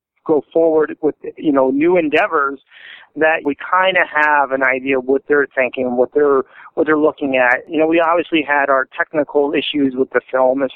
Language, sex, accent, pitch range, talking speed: English, male, American, 130-150 Hz, 200 wpm